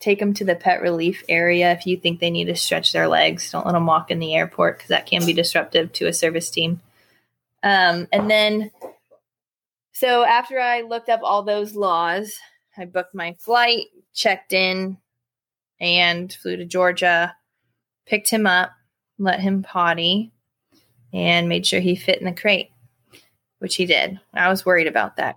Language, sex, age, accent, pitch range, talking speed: English, female, 20-39, American, 170-195 Hz, 175 wpm